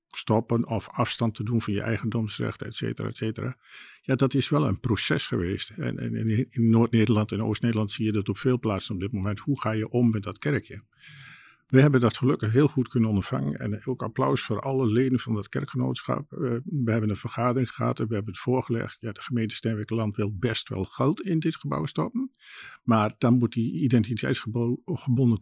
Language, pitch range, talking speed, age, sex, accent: Dutch, 110-130 Hz, 200 wpm, 50-69, male, Dutch